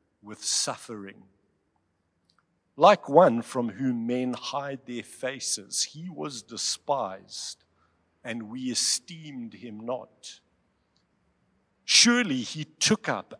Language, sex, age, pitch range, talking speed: English, male, 50-69, 110-160 Hz, 100 wpm